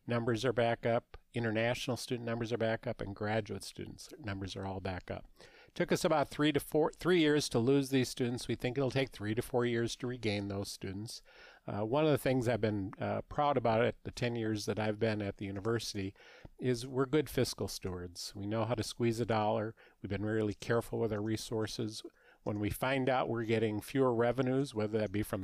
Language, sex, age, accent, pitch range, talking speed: English, male, 40-59, American, 100-125 Hz, 220 wpm